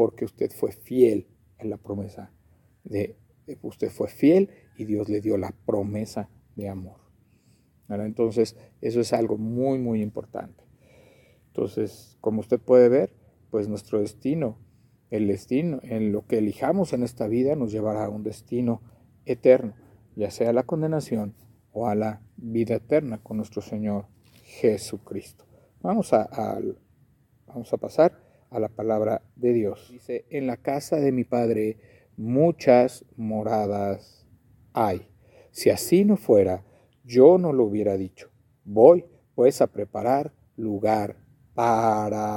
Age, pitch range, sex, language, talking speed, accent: 50-69, 105-120 Hz, male, Spanish, 135 wpm, Mexican